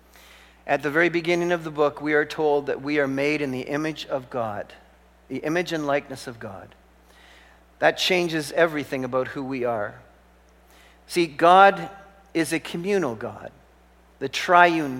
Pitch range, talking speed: 125-165 Hz, 160 wpm